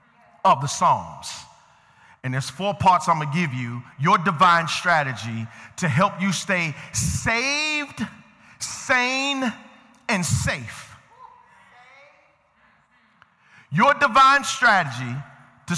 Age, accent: 50-69, American